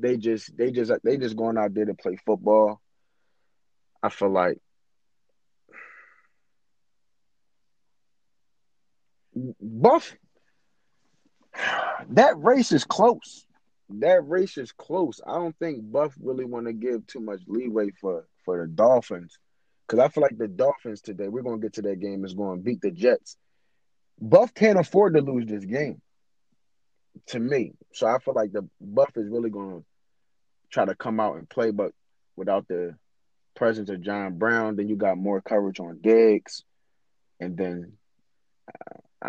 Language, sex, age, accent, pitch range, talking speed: English, male, 30-49, American, 100-125 Hz, 155 wpm